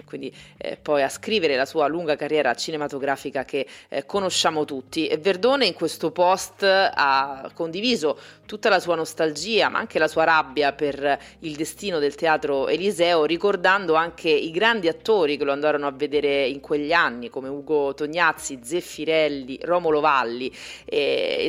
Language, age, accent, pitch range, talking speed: Italian, 30-49, native, 145-180 Hz, 155 wpm